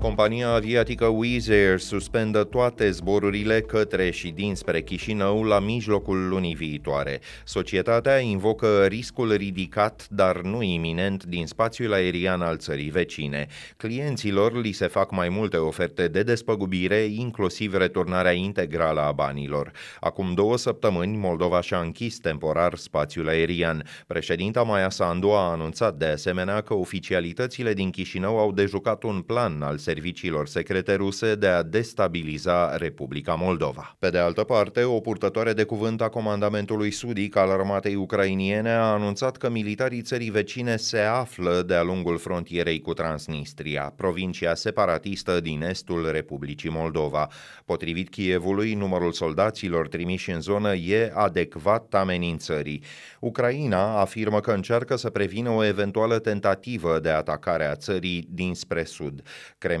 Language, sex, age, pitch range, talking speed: Romanian, male, 30-49, 85-110 Hz, 130 wpm